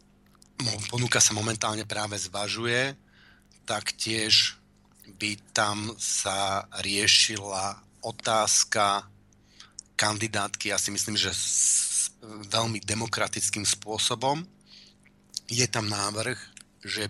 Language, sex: Slovak, male